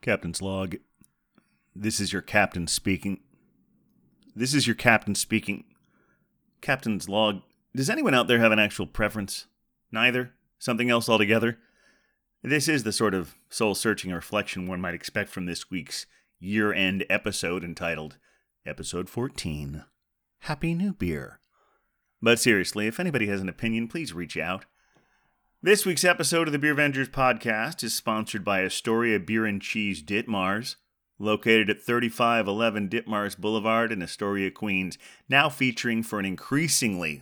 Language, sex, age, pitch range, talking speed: English, male, 30-49, 100-120 Hz, 140 wpm